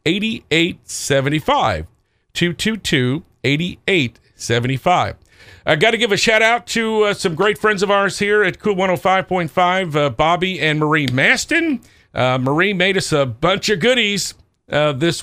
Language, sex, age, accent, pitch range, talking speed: English, male, 50-69, American, 135-200 Hz, 140 wpm